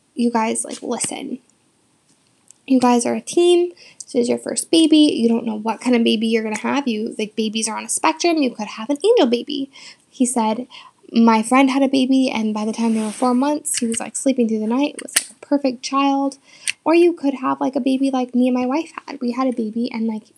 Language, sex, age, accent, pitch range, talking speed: English, female, 10-29, American, 230-280 Hz, 250 wpm